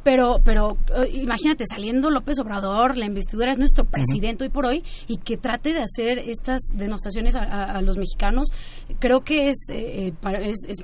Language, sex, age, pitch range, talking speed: Spanish, female, 20-39, 205-260 Hz, 175 wpm